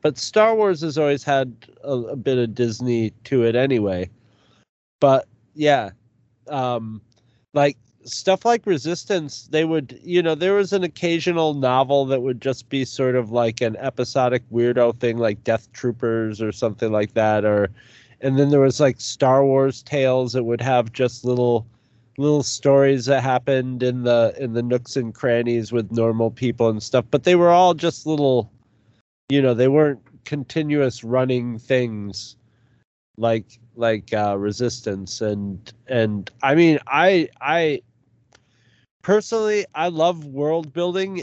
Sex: male